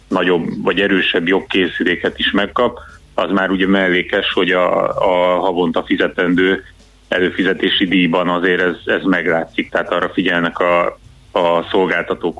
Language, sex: Hungarian, male